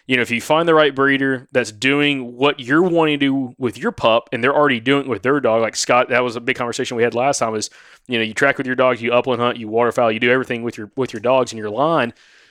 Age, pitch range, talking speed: 20-39, 120-145 Hz, 295 wpm